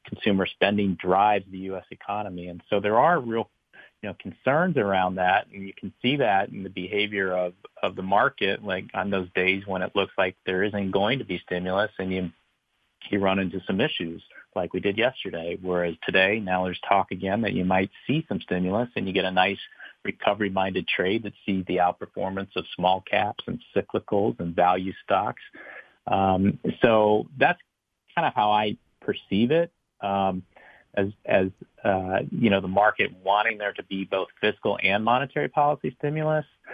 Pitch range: 95-105 Hz